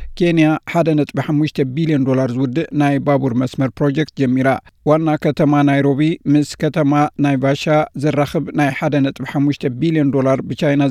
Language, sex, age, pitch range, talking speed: Amharic, male, 60-79, 135-155 Hz, 125 wpm